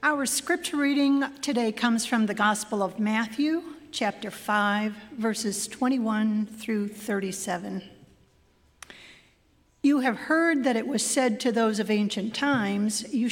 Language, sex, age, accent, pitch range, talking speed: English, female, 50-69, American, 205-245 Hz, 130 wpm